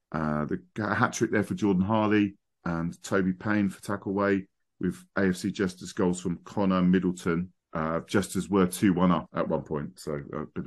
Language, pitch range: English, 90-105 Hz